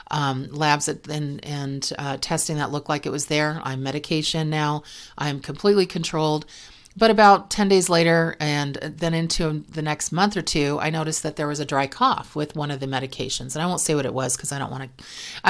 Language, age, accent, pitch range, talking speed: English, 40-59, American, 145-180 Hz, 215 wpm